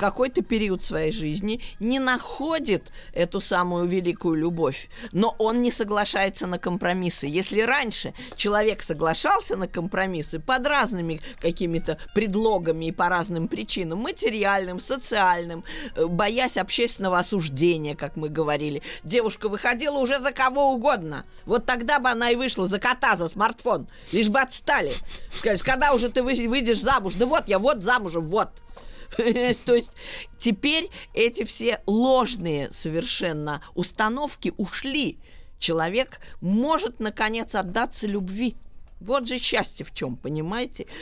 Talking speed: 130 wpm